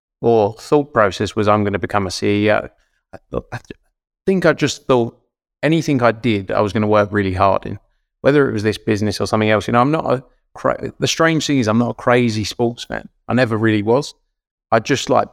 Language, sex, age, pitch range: English, male, 20-39, 100-115 Hz